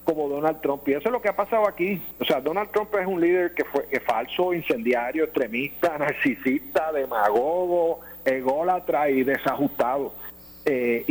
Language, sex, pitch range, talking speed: Spanish, male, 130-180 Hz, 155 wpm